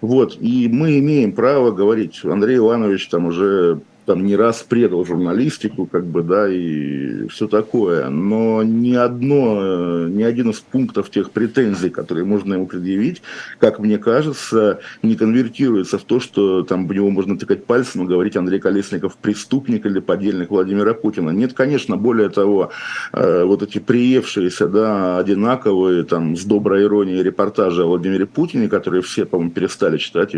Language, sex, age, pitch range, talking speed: Russian, male, 50-69, 95-110 Hz, 155 wpm